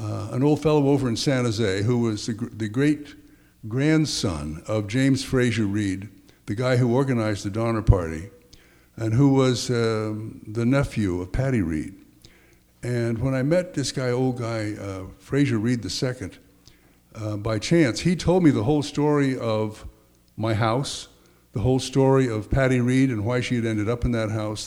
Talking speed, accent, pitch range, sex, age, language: 180 wpm, American, 105-135 Hz, male, 60-79, English